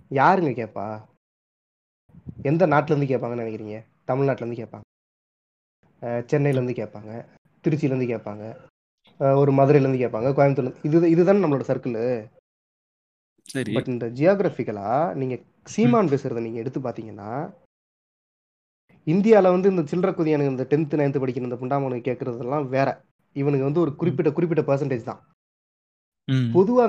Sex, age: male, 20-39